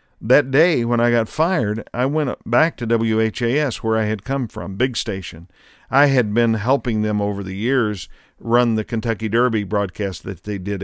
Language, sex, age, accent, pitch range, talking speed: English, male, 50-69, American, 105-120 Hz, 190 wpm